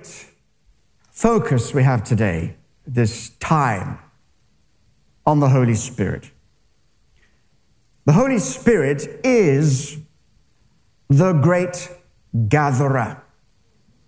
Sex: male